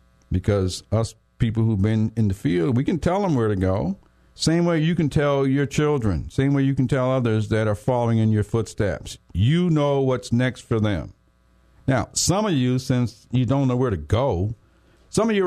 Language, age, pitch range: English, 50-69, 105-145 Hz